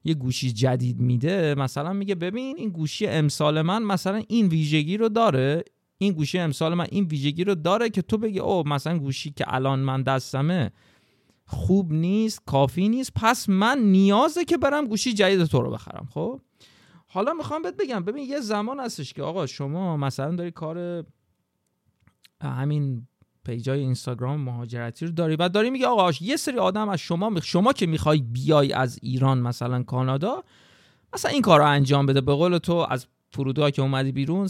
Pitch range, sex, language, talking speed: 135-195 Hz, male, Persian, 175 wpm